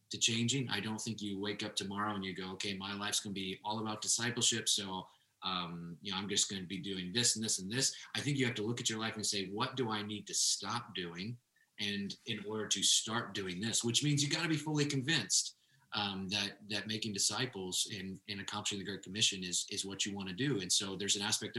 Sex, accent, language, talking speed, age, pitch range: male, American, English, 245 wpm, 30-49, 100-120 Hz